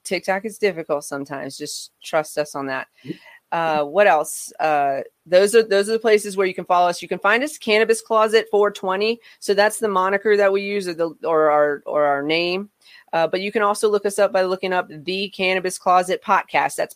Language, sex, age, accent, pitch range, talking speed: English, female, 30-49, American, 165-200 Hz, 215 wpm